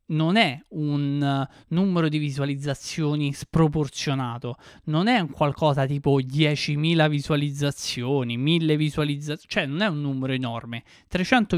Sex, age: male, 20-39